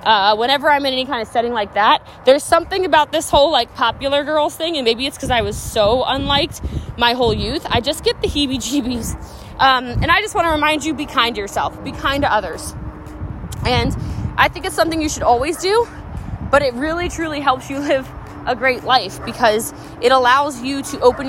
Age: 20-39